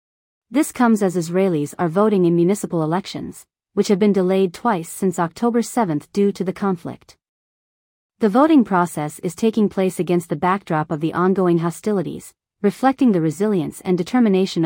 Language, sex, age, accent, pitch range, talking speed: English, female, 40-59, American, 175-210 Hz, 160 wpm